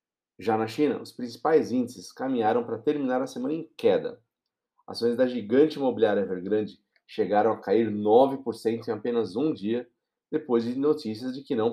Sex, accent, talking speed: male, Brazilian, 165 wpm